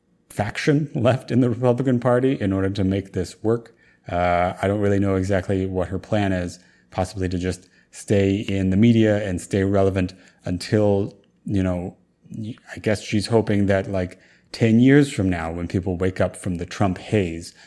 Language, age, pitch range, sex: English, 30-49, 90-110 Hz, male